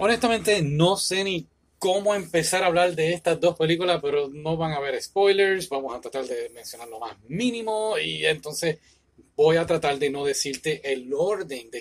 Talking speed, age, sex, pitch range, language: 190 wpm, 30-49, male, 125-180 Hz, Spanish